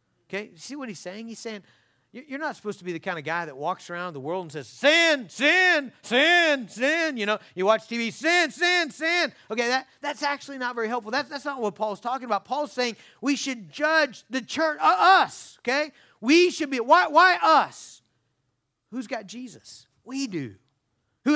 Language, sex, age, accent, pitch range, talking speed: English, male, 40-59, American, 215-295 Hz, 195 wpm